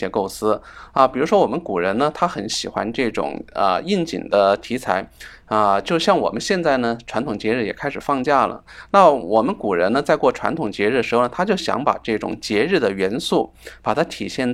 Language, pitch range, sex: Chinese, 110-165 Hz, male